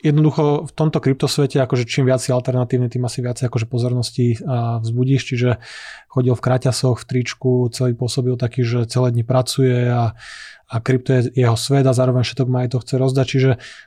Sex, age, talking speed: male, 20-39, 185 wpm